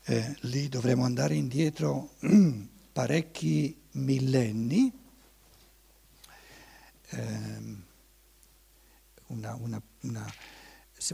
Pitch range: 140-205 Hz